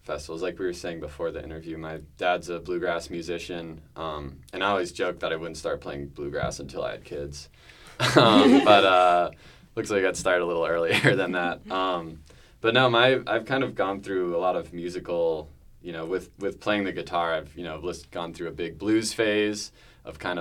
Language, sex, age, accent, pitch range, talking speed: English, male, 20-39, American, 75-95 Hz, 210 wpm